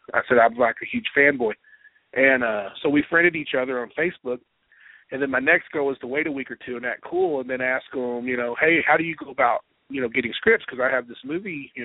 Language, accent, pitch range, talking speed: English, American, 125-175 Hz, 270 wpm